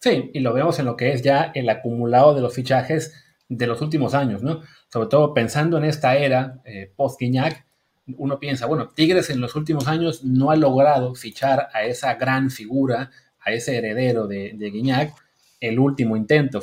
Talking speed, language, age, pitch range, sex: 190 wpm, Spanish, 30-49, 120-160 Hz, male